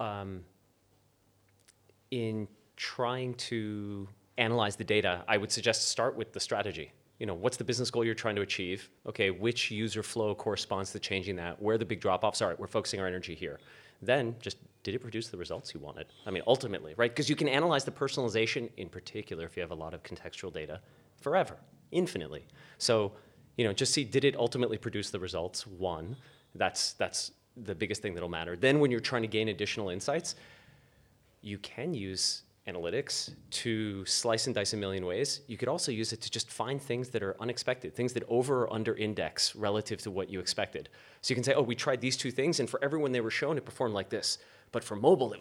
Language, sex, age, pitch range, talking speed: English, male, 30-49, 100-120 Hz, 215 wpm